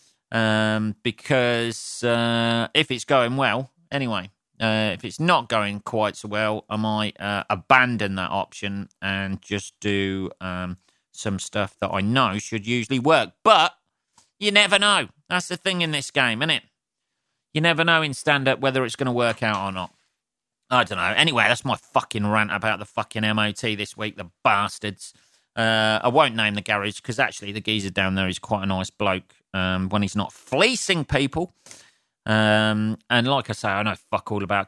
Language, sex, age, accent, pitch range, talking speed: English, male, 40-59, British, 105-145 Hz, 185 wpm